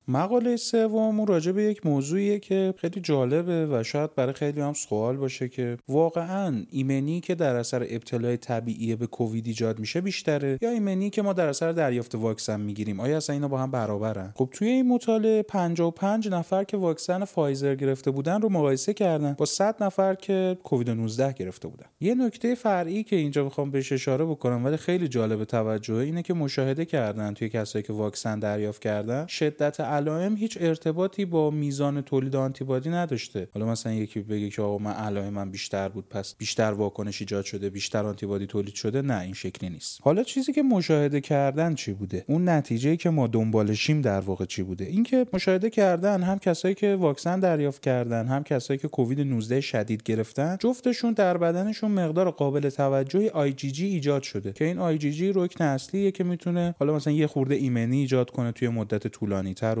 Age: 30-49